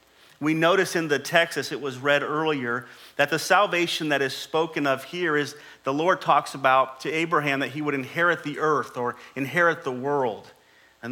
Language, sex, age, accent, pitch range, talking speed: English, male, 40-59, American, 140-170 Hz, 195 wpm